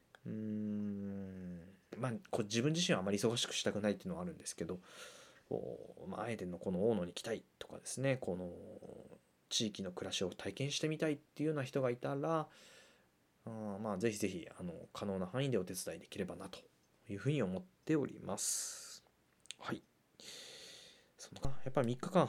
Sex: male